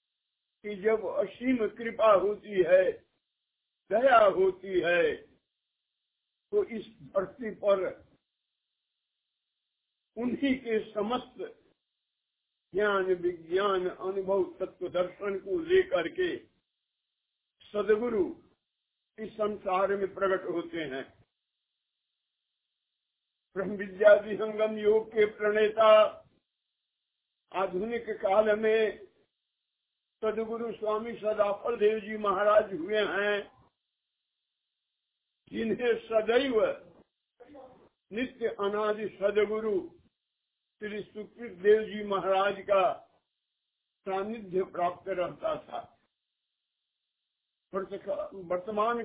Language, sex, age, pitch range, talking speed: Hindi, male, 50-69, 200-230 Hz, 80 wpm